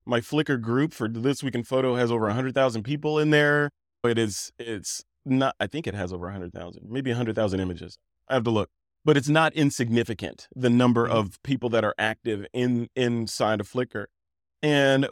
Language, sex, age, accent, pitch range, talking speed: English, male, 30-49, American, 110-140 Hz, 215 wpm